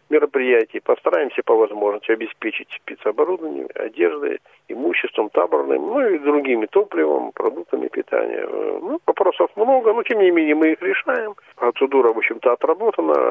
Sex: male